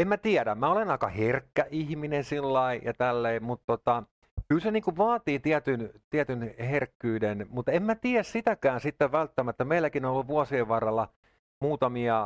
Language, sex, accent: Finnish, male, native